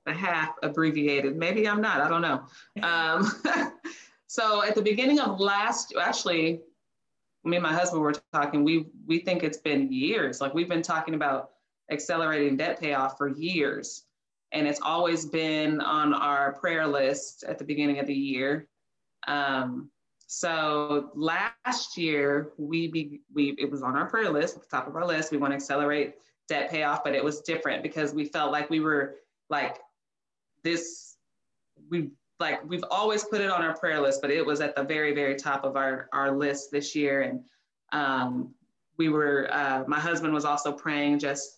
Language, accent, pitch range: English, American, 145-165 Hz